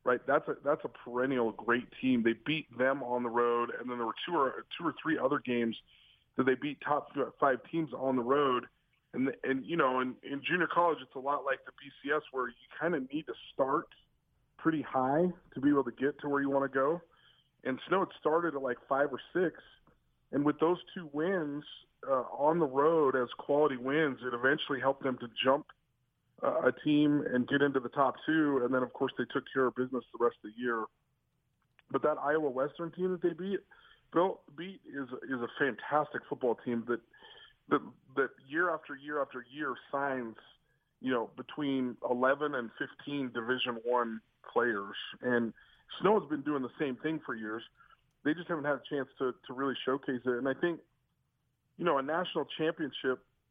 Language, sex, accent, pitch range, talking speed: English, male, American, 125-150 Hz, 200 wpm